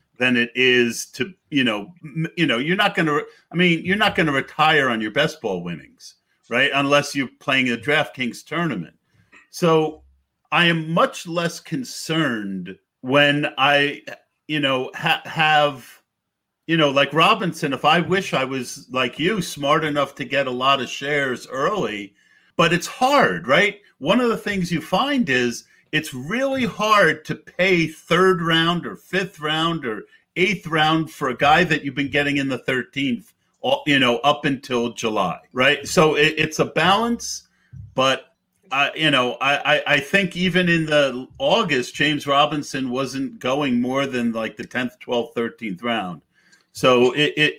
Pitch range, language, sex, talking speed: 130-170 Hz, English, male, 165 wpm